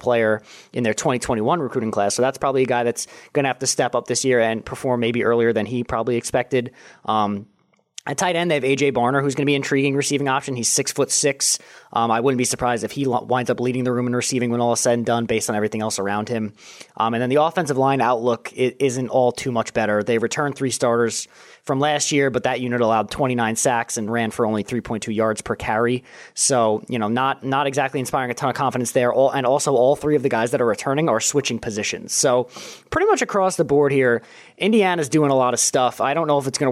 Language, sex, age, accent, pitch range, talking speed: English, male, 20-39, American, 115-140 Hz, 245 wpm